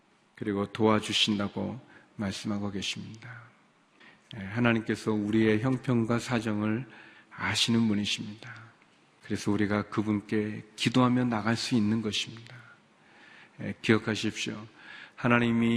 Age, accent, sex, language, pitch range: 40-59, native, male, Korean, 110-130 Hz